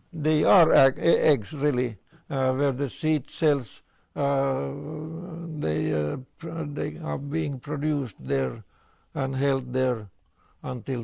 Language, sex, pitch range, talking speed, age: English, male, 120-150 Hz, 125 wpm, 60-79